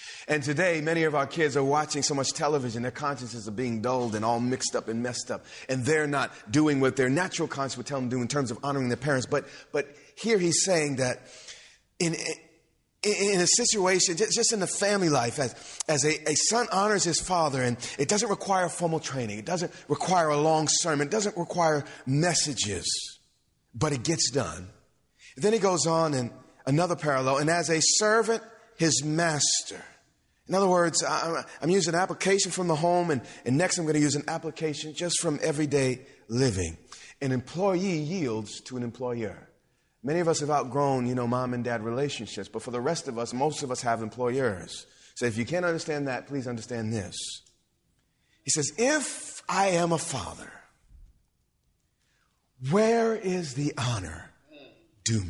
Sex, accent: male, American